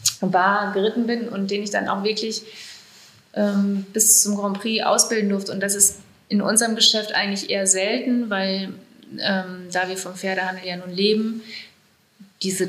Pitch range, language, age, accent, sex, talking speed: 190-215 Hz, German, 30-49, German, female, 165 wpm